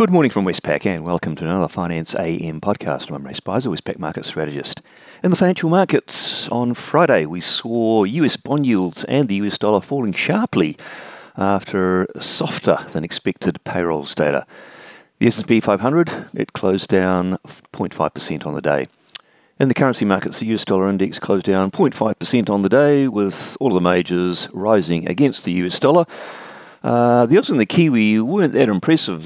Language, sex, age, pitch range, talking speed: English, male, 40-59, 85-110 Hz, 170 wpm